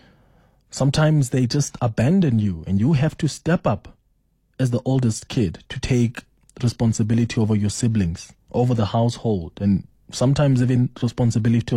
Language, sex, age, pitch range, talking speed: English, male, 20-39, 110-140 Hz, 145 wpm